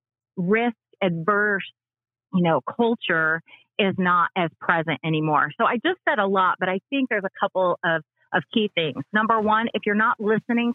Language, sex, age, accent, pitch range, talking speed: English, female, 30-49, American, 175-235 Hz, 180 wpm